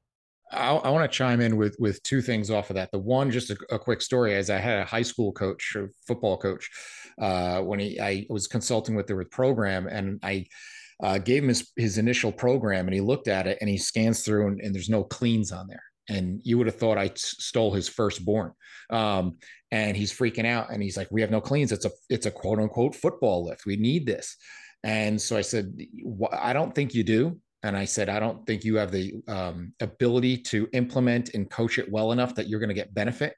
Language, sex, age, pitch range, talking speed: English, male, 30-49, 100-120 Hz, 235 wpm